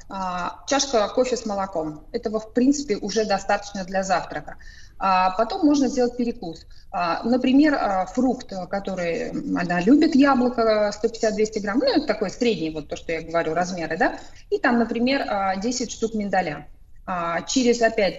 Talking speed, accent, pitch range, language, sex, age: 150 wpm, native, 185-240 Hz, Russian, female, 20-39